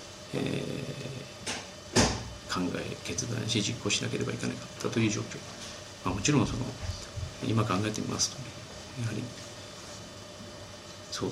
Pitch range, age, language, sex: 100-120 Hz, 40-59, Japanese, male